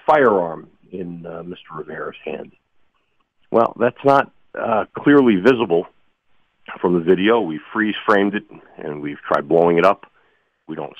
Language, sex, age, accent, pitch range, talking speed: English, male, 50-69, American, 85-110 Hz, 145 wpm